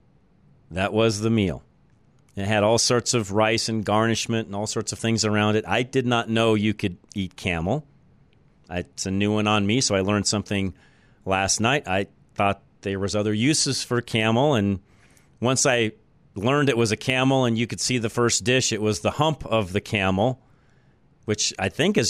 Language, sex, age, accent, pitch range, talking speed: English, male, 40-59, American, 105-135 Hz, 200 wpm